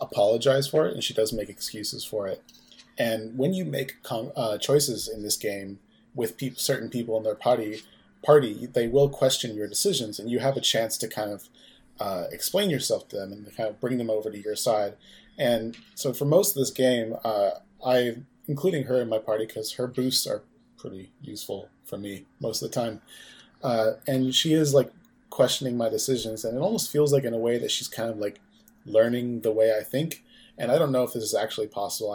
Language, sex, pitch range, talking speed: English, male, 105-135 Hz, 215 wpm